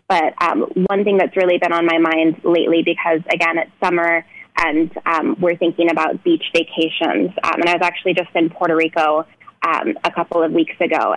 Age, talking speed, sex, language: 20-39, 200 wpm, female, English